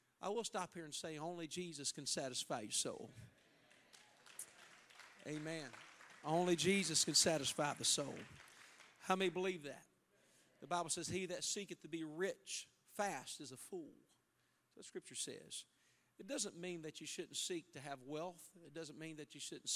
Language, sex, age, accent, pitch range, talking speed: English, male, 50-69, American, 145-170 Hz, 165 wpm